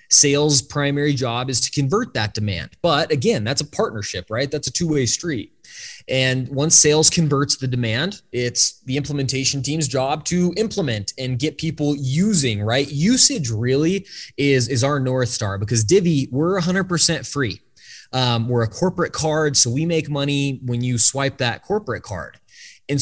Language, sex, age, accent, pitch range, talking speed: English, male, 20-39, American, 125-150 Hz, 170 wpm